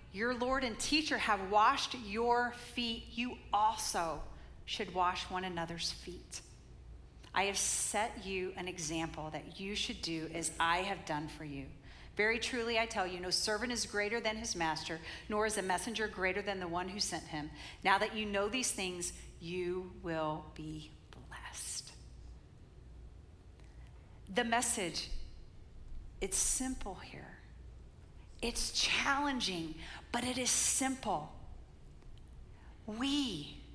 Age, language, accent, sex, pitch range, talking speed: 40-59, English, American, female, 180-280 Hz, 135 wpm